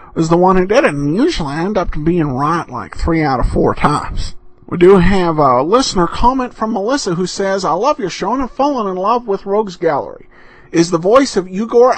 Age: 50-69